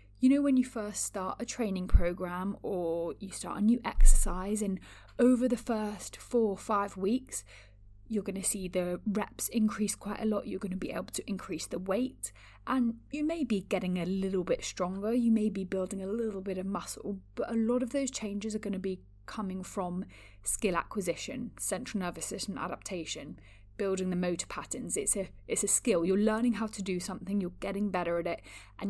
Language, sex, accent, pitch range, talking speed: English, female, British, 180-225 Hz, 205 wpm